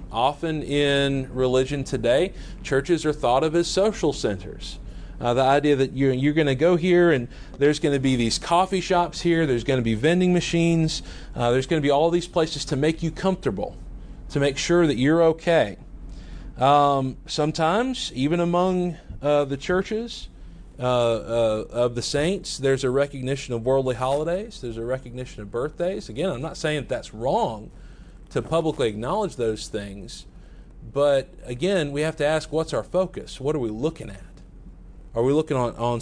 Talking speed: 175 wpm